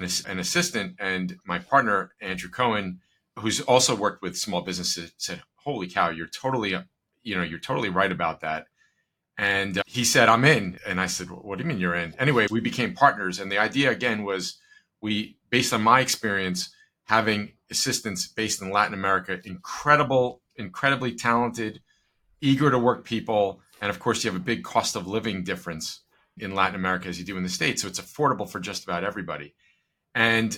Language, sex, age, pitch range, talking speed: English, male, 40-59, 95-125 Hz, 185 wpm